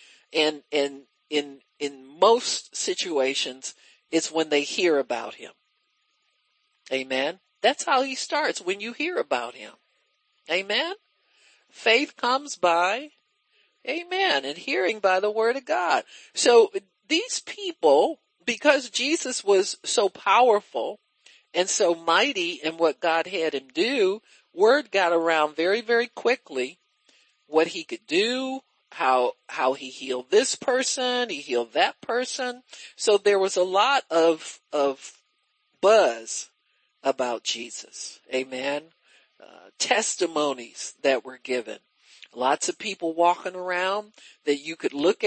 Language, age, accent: English, 50-69, American